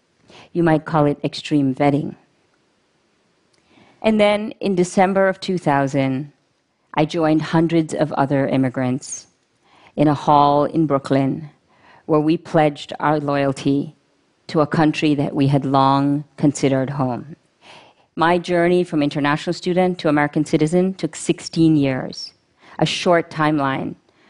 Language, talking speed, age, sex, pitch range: Russian, 125 wpm, 50-69, female, 140-165 Hz